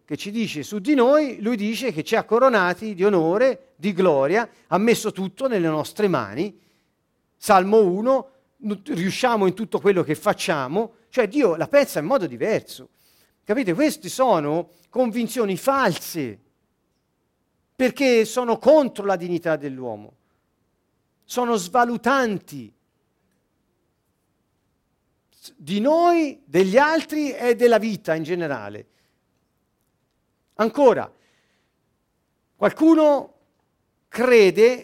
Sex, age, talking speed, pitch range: male, 40-59, 105 wpm, 175-250 Hz